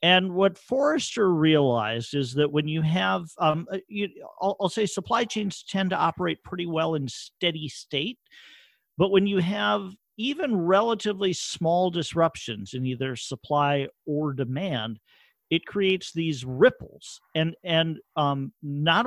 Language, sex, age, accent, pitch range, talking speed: English, male, 50-69, American, 125-180 Hz, 140 wpm